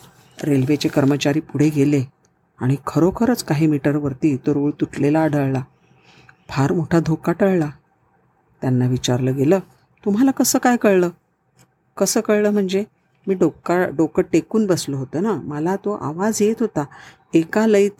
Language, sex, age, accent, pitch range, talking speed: Marathi, female, 50-69, native, 145-190 Hz, 90 wpm